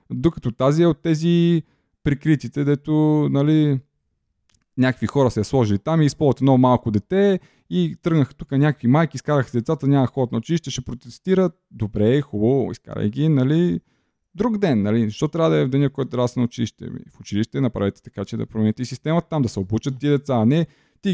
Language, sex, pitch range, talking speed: Bulgarian, male, 115-155 Hz, 195 wpm